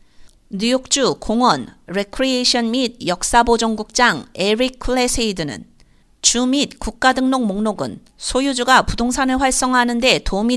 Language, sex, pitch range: Korean, female, 210-250 Hz